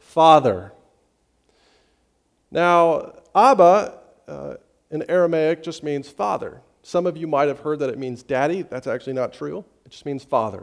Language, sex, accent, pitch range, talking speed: English, male, American, 140-185 Hz, 150 wpm